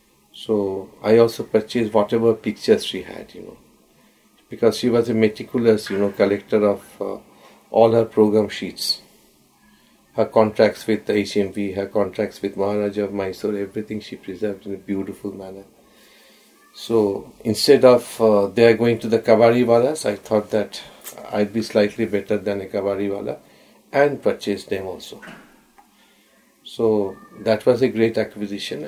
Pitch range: 100-110 Hz